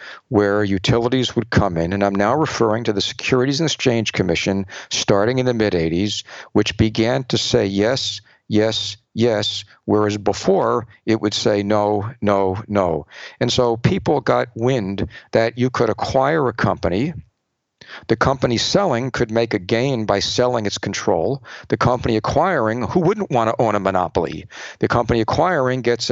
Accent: American